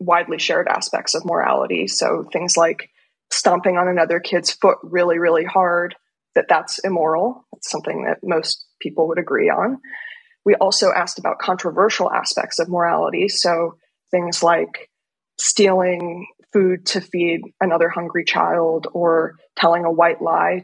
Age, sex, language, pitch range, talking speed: 20-39, female, English, 175-225 Hz, 145 wpm